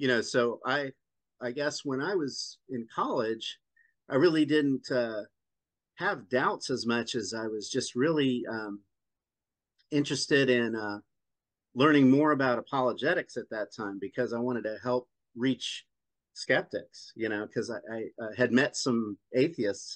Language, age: English, 50-69